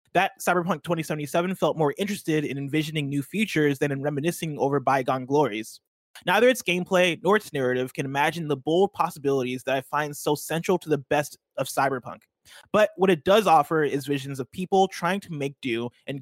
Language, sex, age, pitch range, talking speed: English, male, 20-39, 135-180 Hz, 190 wpm